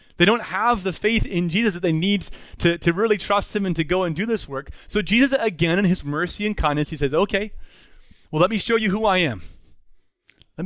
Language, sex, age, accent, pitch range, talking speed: English, male, 30-49, American, 130-185 Hz, 235 wpm